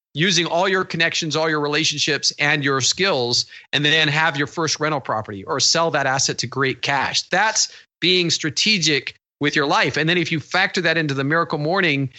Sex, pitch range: male, 130-160 Hz